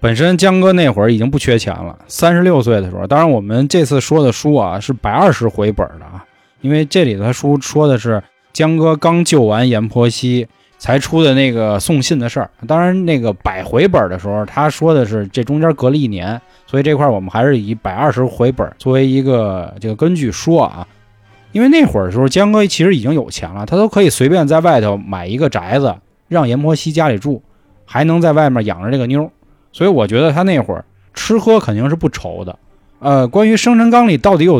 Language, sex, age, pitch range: Chinese, male, 20-39, 105-160 Hz